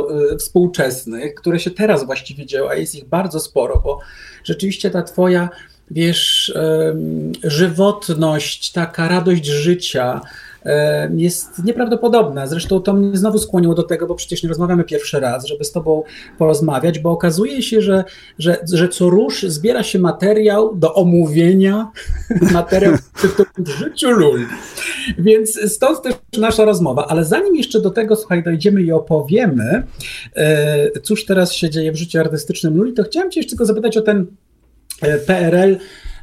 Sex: male